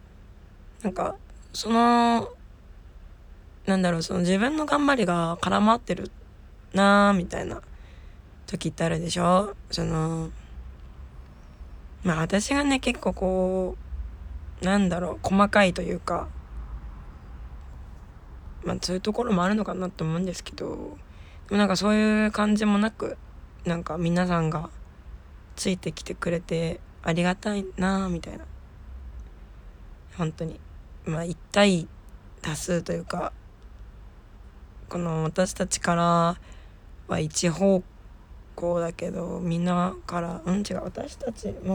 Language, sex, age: Japanese, female, 20-39